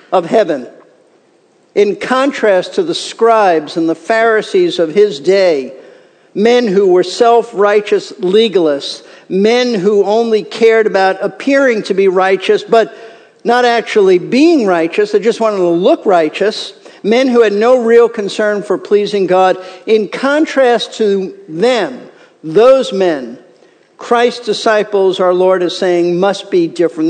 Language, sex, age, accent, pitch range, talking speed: English, male, 50-69, American, 195-255 Hz, 140 wpm